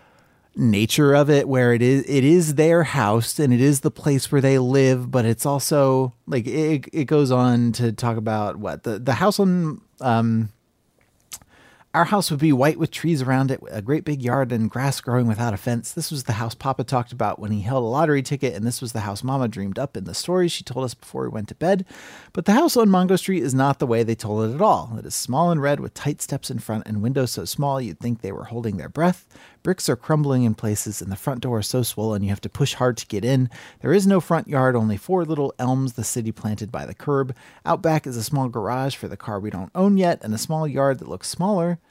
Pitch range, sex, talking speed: 110-145 Hz, male, 255 wpm